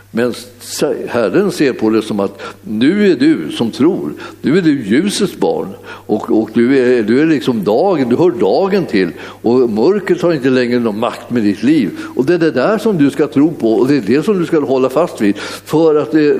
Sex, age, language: male, 60-79, Swedish